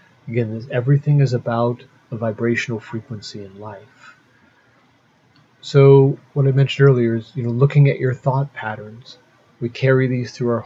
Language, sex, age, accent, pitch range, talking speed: English, male, 30-49, American, 115-135 Hz, 150 wpm